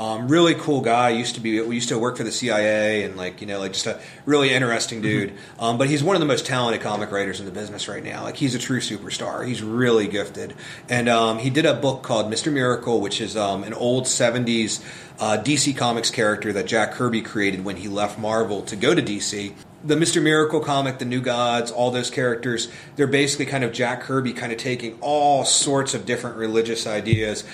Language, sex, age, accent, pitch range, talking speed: English, male, 30-49, American, 110-135 Hz, 220 wpm